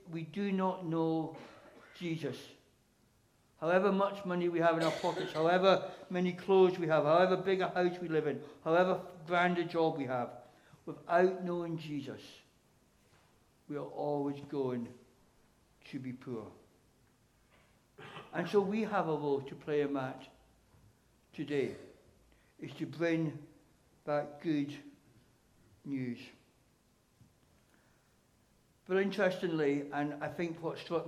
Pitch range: 125-165 Hz